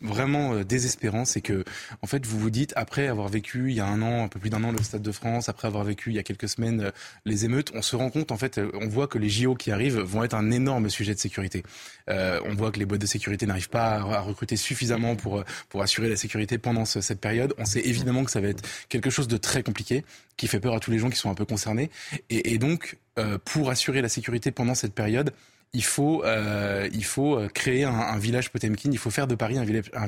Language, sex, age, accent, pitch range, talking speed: French, male, 20-39, French, 105-125 Hz, 255 wpm